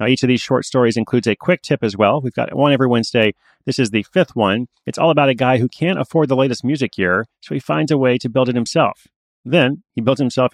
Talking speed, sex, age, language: 270 wpm, male, 30-49, English